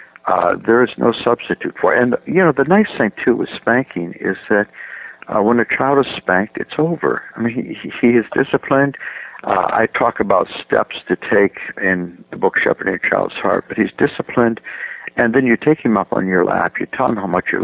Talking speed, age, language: 225 wpm, 60-79, English